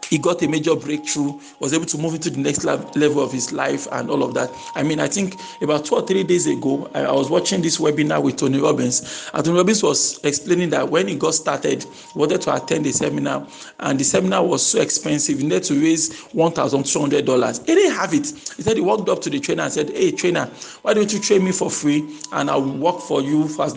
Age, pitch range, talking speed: 40-59, 150-220 Hz, 245 wpm